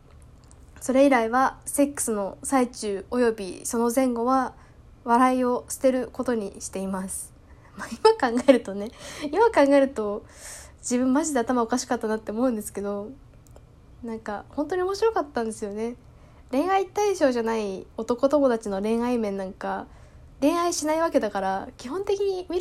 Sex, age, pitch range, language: female, 10-29, 205-275 Hz, Japanese